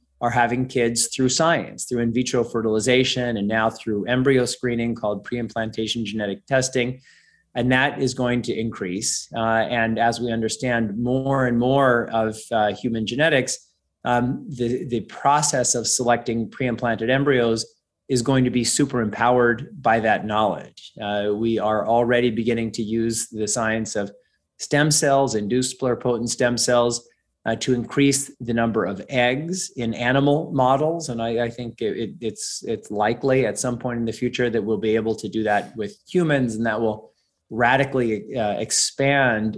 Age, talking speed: 30-49, 165 wpm